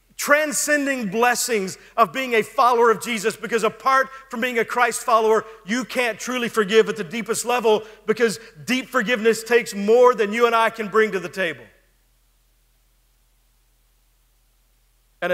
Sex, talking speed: male, 150 wpm